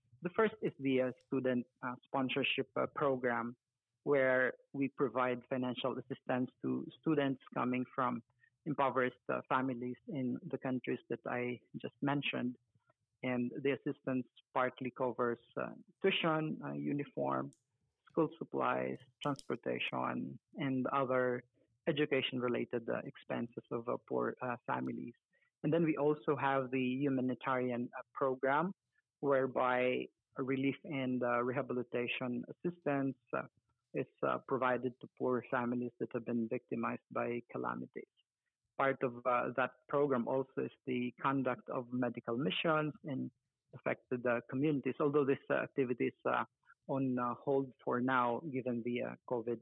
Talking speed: 130 wpm